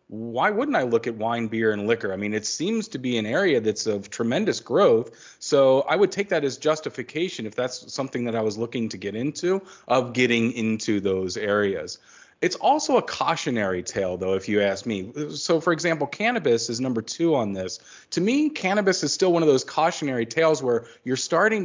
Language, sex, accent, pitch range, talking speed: English, male, American, 110-150 Hz, 210 wpm